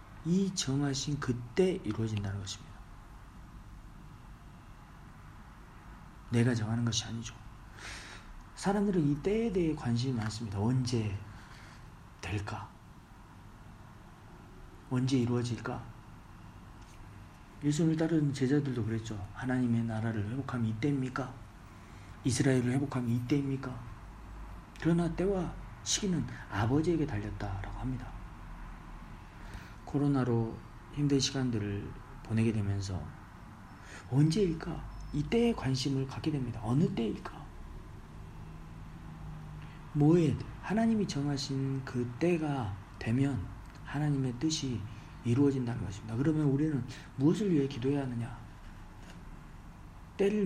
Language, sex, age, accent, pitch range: Korean, male, 40-59, native, 105-140 Hz